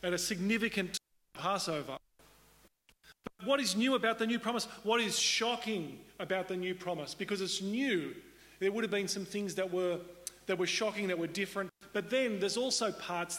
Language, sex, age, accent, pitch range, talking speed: English, male, 40-59, Australian, 165-205 Hz, 190 wpm